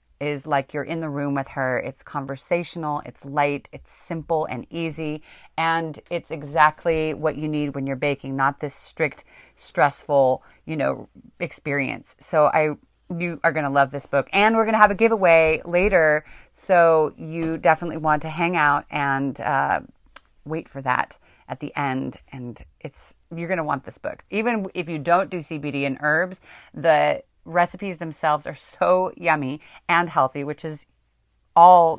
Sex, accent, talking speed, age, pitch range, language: female, American, 165 wpm, 30-49, 145-175 Hz, English